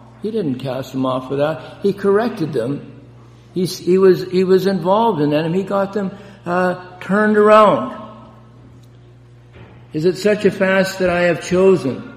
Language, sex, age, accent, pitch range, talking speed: English, male, 60-79, American, 125-175 Hz, 165 wpm